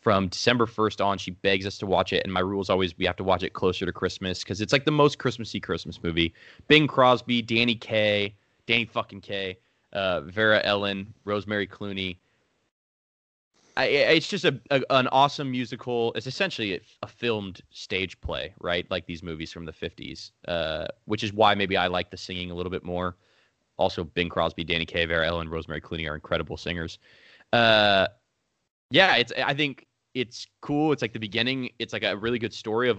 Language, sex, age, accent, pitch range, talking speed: English, male, 20-39, American, 90-115 Hz, 195 wpm